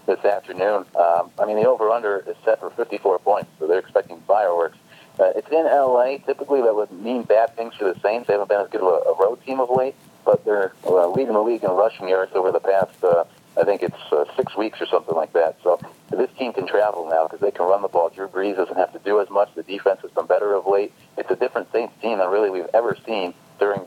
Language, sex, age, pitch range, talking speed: English, male, 50-69, 100-160 Hz, 250 wpm